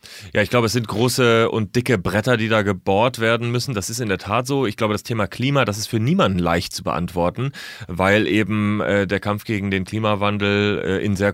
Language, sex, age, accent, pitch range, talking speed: German, male, 30-49, German, 95-110 Hz, 230 wpm